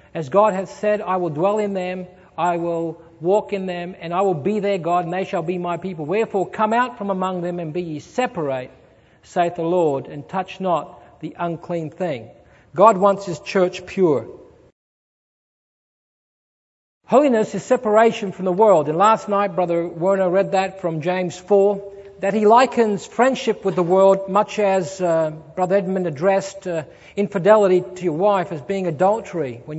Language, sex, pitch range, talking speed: English, male, 170-200 Hz, 175 wpm